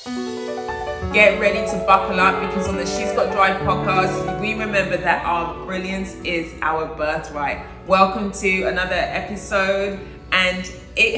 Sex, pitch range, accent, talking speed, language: female, 155-195 Hz, British, 140 wpm, English